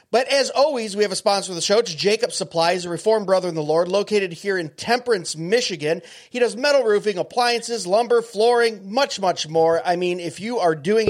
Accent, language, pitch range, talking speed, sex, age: American, English, 165-215 Hz, 215 wpm, male, 30-49